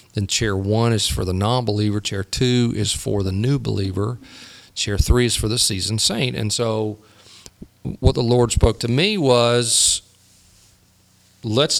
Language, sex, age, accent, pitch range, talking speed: English, male, 40-59, American, 100-125 Hz, 160 wpm